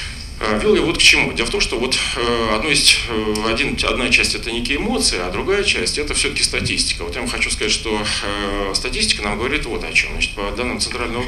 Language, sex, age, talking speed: Russian, male, 40-59, 205 wpm